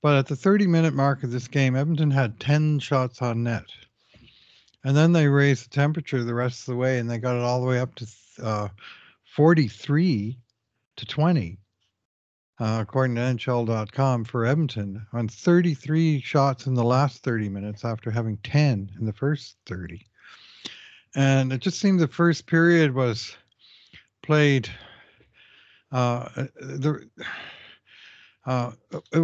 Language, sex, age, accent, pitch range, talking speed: English, male, 60-79, American, 110-140 Hz, 150 wpm